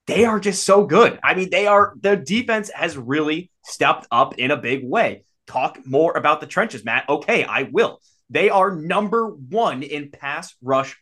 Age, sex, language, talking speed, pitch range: 20-39, male, English, 190 wpm, 120-150 Hz